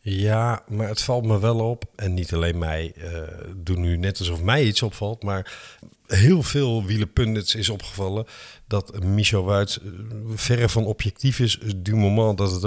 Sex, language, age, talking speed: male, Dutch, 50-69, 175 wpm